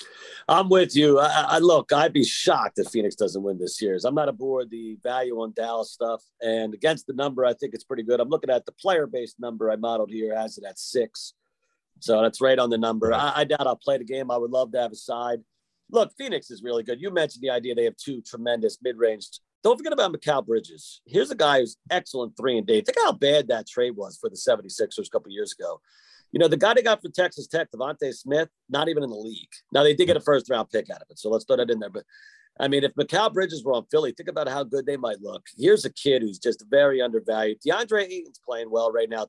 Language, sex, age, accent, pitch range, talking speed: English, male, 40-59, American, 120-200 Hz, 255 wpm